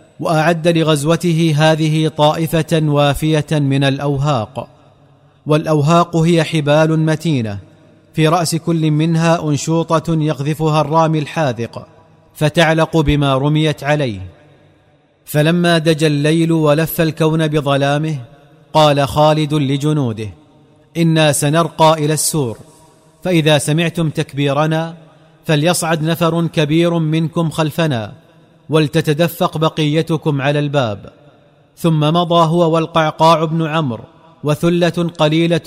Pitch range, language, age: 150-165 Hz, Arabic, 40-59